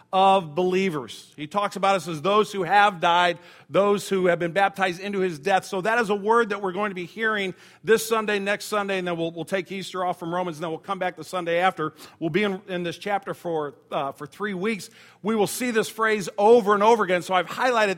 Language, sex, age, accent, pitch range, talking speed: English, male, 50-69, American, 180-220 Hz, 245 wpm